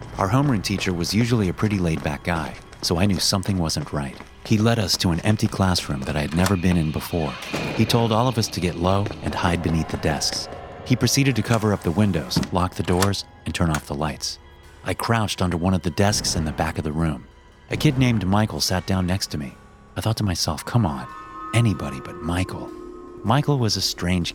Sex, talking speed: male, 230 wpm